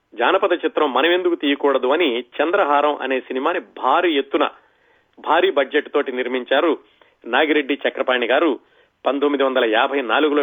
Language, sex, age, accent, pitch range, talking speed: Telugu, male, 40-59, native, 140-195 Hz, 105 wpm